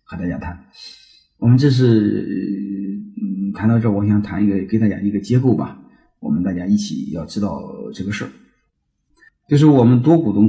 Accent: native